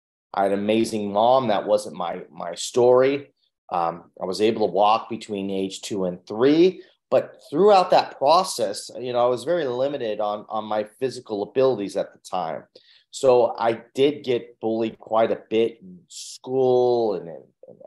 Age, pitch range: 30-49, 105-145 Hz